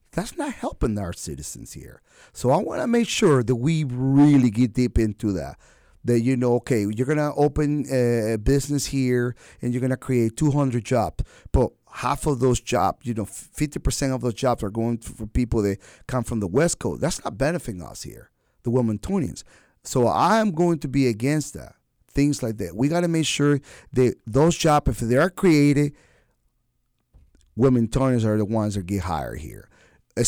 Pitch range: 115-150 Hz